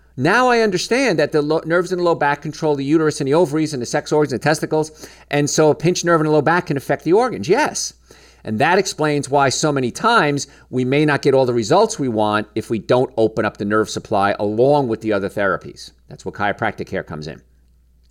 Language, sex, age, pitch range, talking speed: English, male, 50-69, 115-170 Hz, 240 wpm